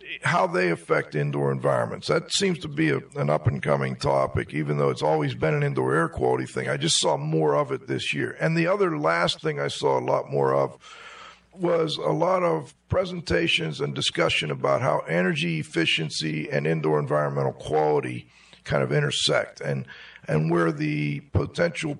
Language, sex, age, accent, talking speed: English, male, 50-69, American, 175 wpm